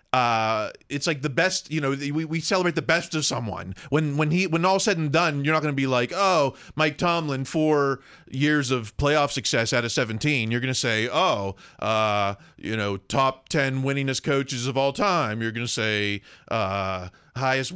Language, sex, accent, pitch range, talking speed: English, male, American, 120-150 Hz, 195 wpm